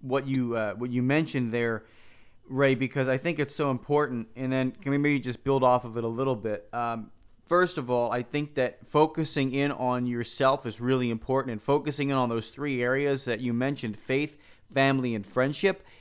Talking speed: 205 wpm